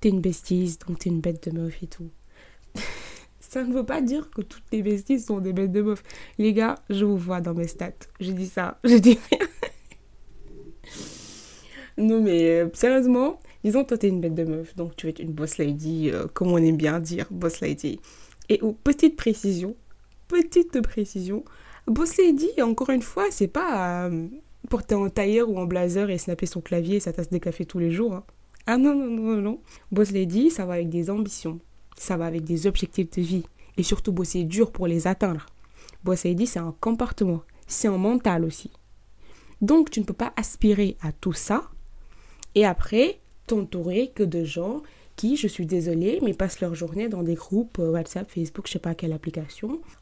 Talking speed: 200 wpm